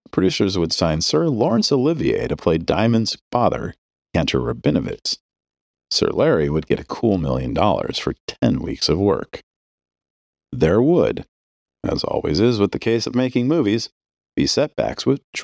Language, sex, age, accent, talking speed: English, male, 40-59, American, 150 wpm